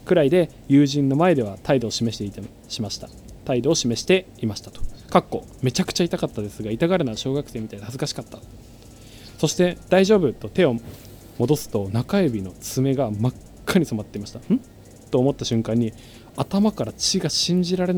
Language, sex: Japanese, male